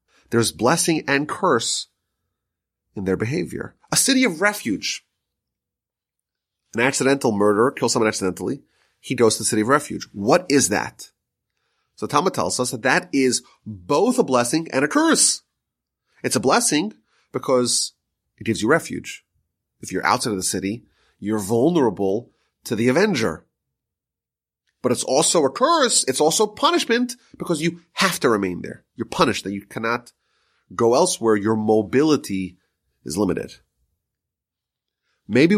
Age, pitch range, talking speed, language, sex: 30-49, 110-175 Hz, 145 wpm, English, male